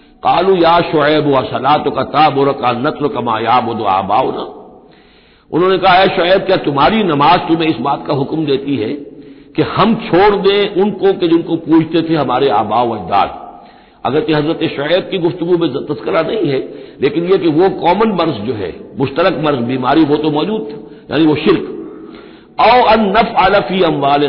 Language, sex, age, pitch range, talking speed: Hindi, male, 60-79, 145-200 Hz, 170 wpm